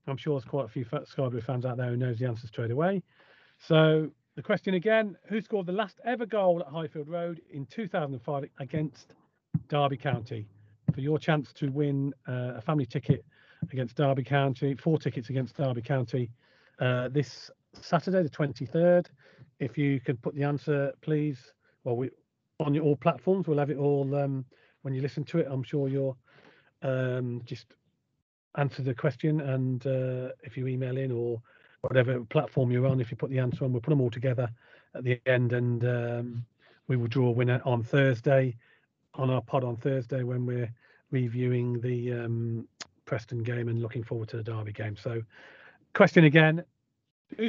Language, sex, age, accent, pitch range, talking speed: English, male, 40-59, British, 125-155 Hz, 180 wpm